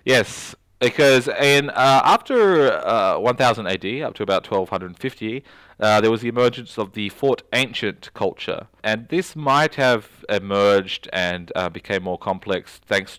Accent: Australian